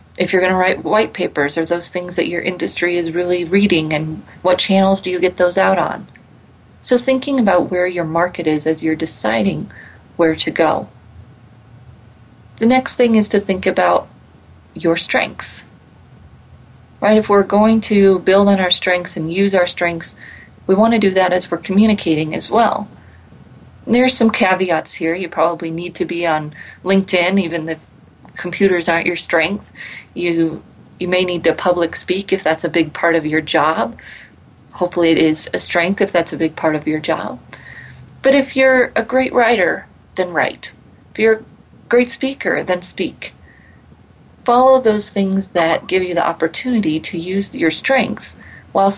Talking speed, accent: 180 wpm, American